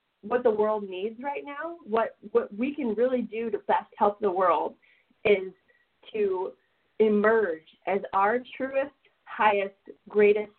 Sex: female